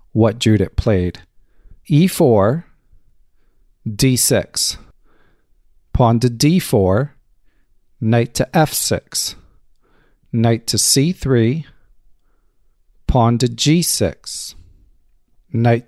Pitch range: 105-130 Hz